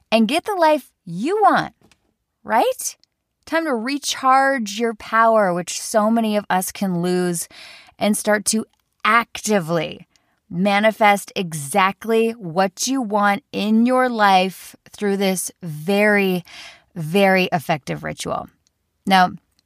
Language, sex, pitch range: English, female, 175-215 Hz